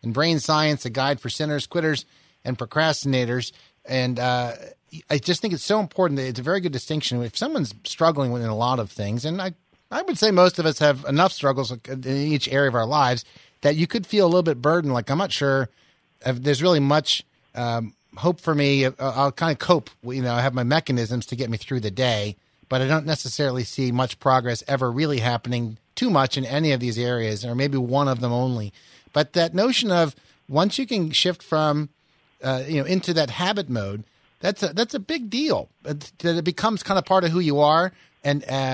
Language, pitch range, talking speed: English, 130-175 Hz, 220 wpm